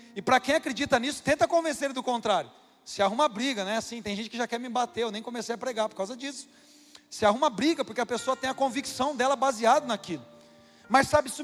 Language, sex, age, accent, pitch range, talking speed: Portuguese, male, 40-59, Brazilian, 175-250 Hz, 235 wpm